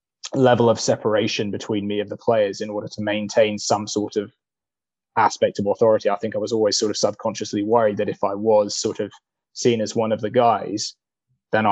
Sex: male